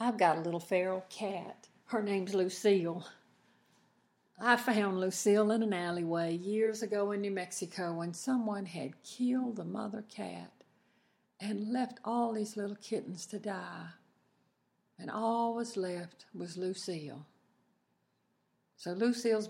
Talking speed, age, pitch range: 130 wpm, 60-79, 185-220 Hz